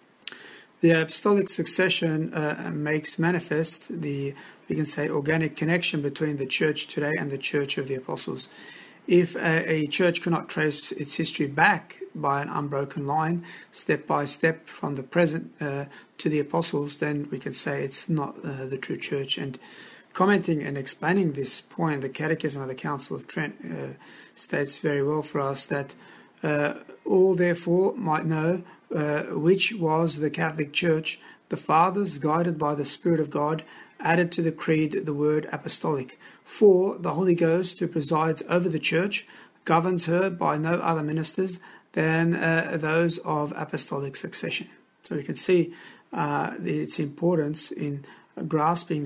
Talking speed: 160 wpm